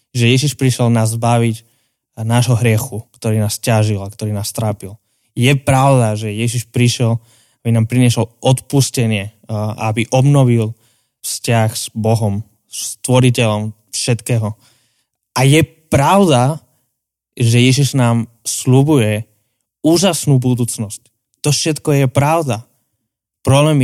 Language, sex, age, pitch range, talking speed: Slovak, male, 20-39, 115-140 Hz, 115 wpm